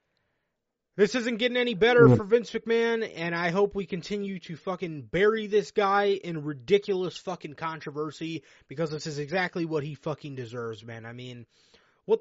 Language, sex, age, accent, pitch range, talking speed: English, male, 20-39, American, 145-200 Hz, 165 wpm